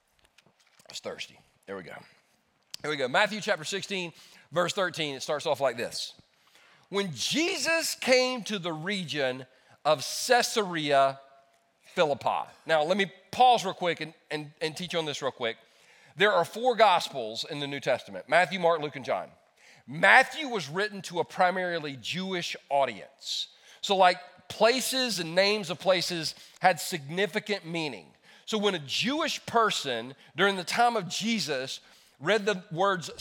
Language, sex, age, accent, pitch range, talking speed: English, male, 40-59, American, 155-215 Hz, 150 wpm